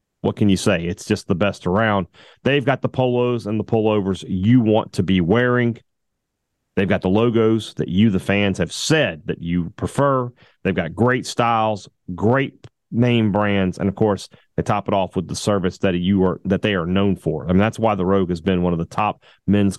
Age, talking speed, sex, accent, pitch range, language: 30-49, 220 wpm, male, American, 95-120 Hz, English